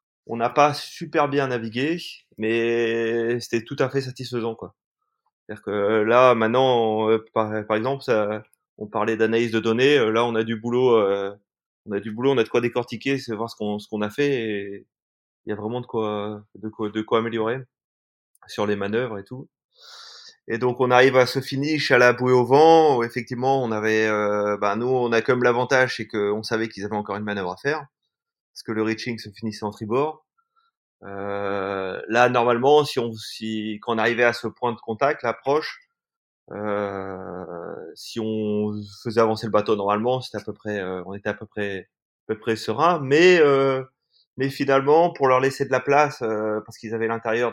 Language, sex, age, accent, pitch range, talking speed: French, male, 20-39, French, 105-135 Hz, 200 wpm